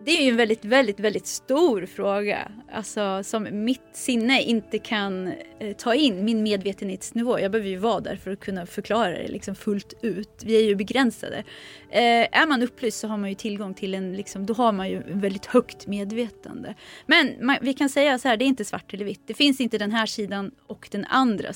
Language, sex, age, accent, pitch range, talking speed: Swedish, female, 30-49, native, 205-255 Hz, 220 wpm